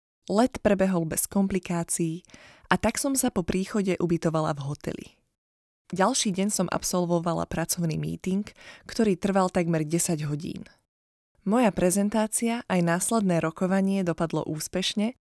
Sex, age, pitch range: female, 20-39, 170-200 Hz